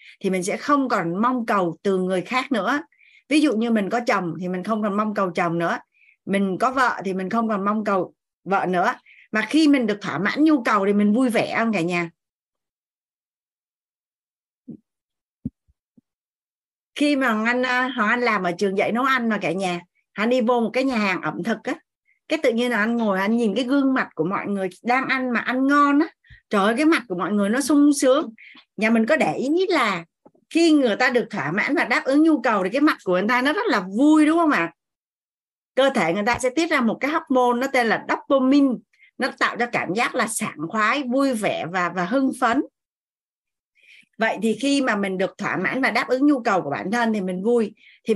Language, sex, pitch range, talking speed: Vietnamese, female, 200-270 Hz, 230 wpm